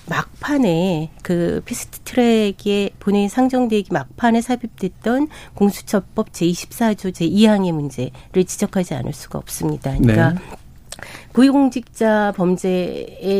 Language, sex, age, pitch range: Korean, female, 40-59, 175-230 Hz